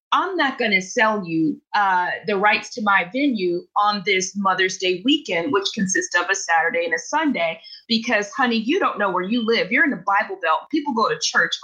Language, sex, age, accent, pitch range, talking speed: English, female, 30-49, American, 195-270 Hz, 215 wpm